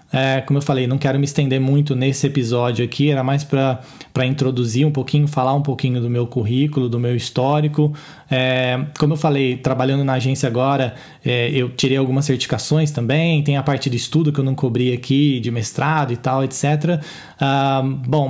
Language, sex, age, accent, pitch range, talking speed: Portuguese, male, 20-39, Brazilian, 130-150 Hz, 190 wpm